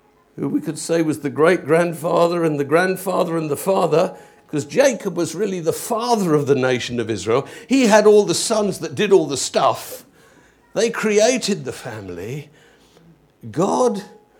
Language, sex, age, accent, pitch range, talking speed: English, male, 50-69, British, 160-240 Hz, 165 wpm